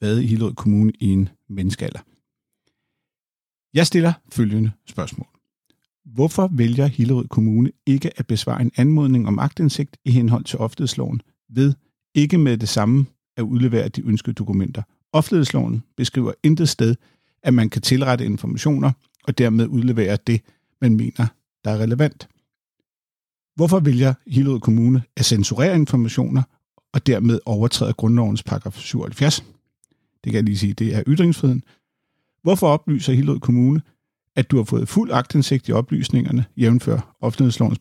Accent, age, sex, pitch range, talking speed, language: native, 50-69, male, 115-140 Hz, 140 wpm, Danish